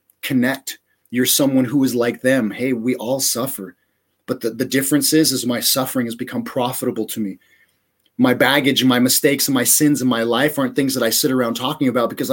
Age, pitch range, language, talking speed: 30-49, 120-155 Hz, English, 215 wpm